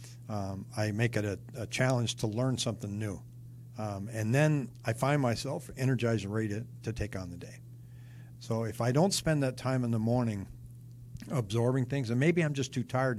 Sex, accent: male, American